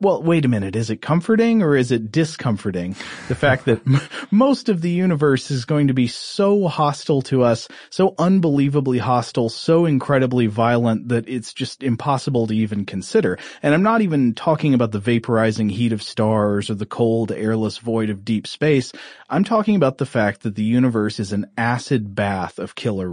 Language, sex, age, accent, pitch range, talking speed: English, male, 30-49, American, 110-145 Hz, 185 wpm